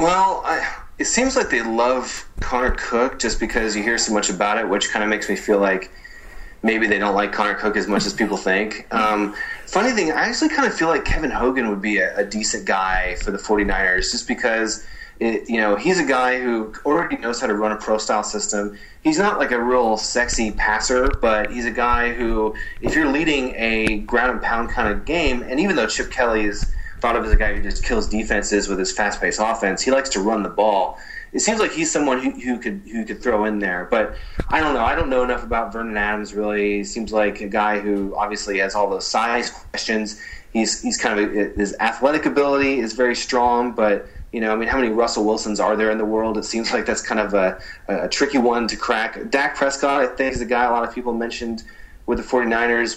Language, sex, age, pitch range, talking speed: English, male, 30-49, 105-125 Hz, 235 wpm